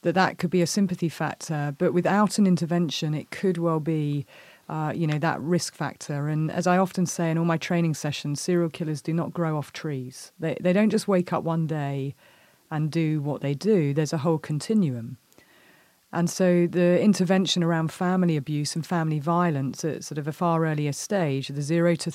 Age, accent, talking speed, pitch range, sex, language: 40-59, British, 205 wpm, 150-175 Hz, female, English